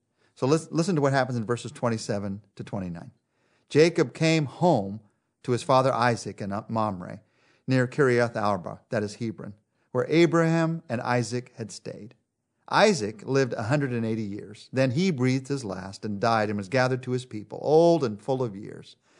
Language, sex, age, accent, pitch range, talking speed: English, male, 40-59, American, 115-150 Hz, 165 wpm